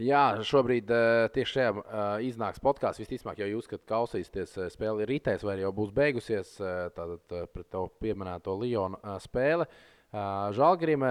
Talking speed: 135 wpm